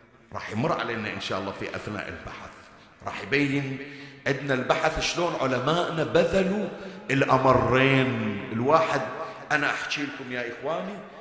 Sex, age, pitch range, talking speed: male, 50-69, 135-185 Hz, 125 wpm